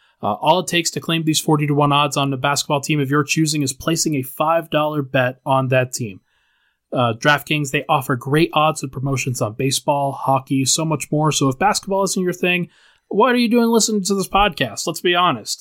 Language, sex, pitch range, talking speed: English, male, 125-150 Hz, 220 wpm